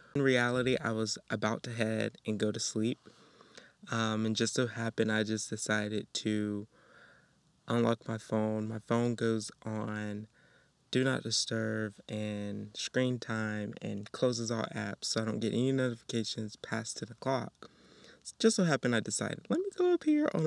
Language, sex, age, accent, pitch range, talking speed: English, male, 20-39, American, 110-130 Hz, 165 wpm